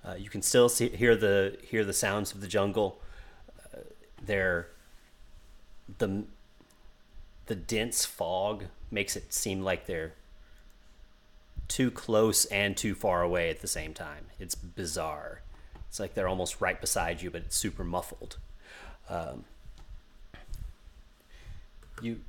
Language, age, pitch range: English, 30-49, 80-100 Hz